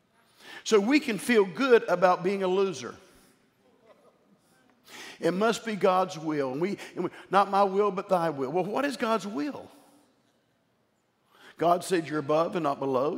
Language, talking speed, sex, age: English, 165 wpm, male, 50-69